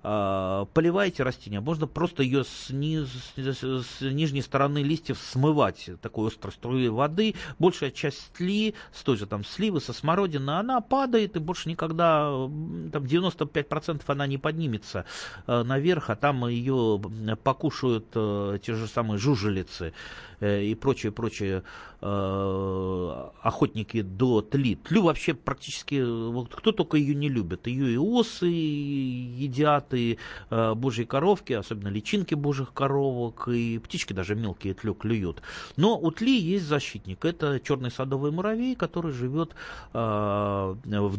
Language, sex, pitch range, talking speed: Russian, male, 110-155 Hz, 130 wpm